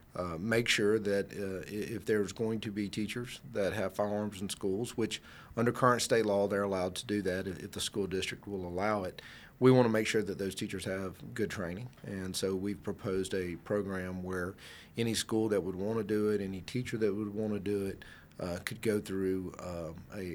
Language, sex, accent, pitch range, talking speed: English, male, American, 95-110 Hz, 220 wpm